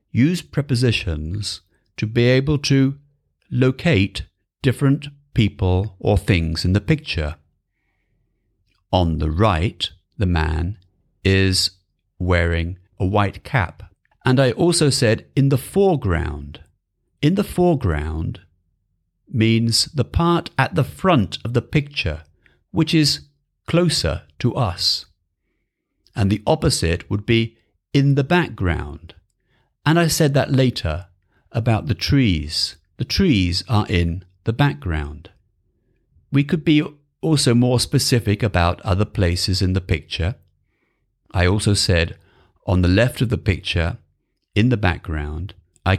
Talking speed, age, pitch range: 125 wpm, 50-69, 90-125 Hz